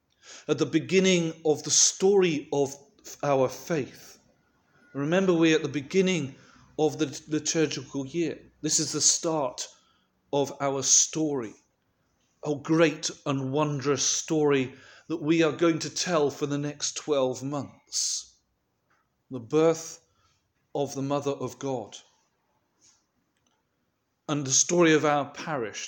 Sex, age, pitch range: male, 40-59, 130-155 Hz